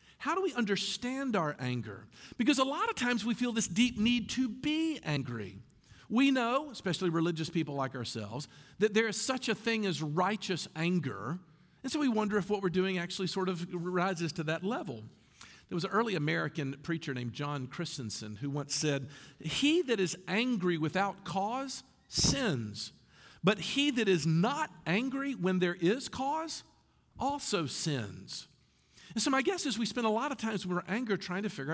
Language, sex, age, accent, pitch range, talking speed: English, male, 50-69, American, 155-235 Hz, 185 wpm